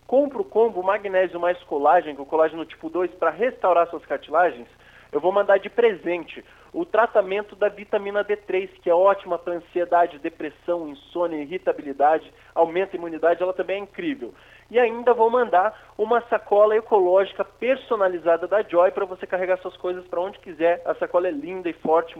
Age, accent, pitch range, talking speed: 20-39, Brazilian, 175-220 Hz, 175 wpm